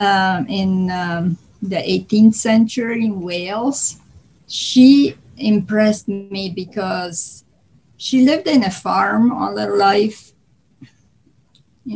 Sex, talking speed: female, 105 wpm